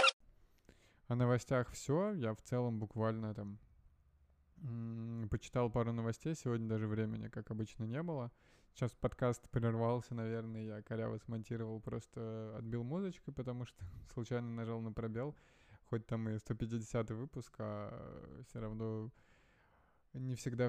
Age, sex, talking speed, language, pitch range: 20-39, male, 130 wpm, Russian, 110-130 Hz